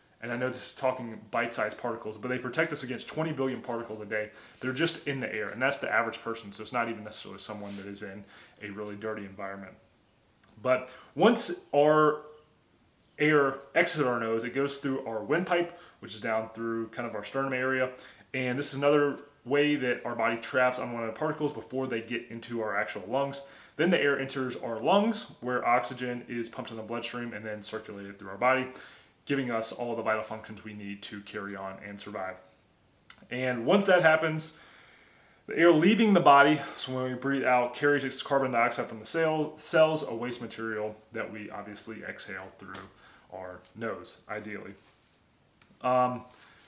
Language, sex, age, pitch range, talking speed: English, male, 20-39, 110-140 Hz, 190 wpm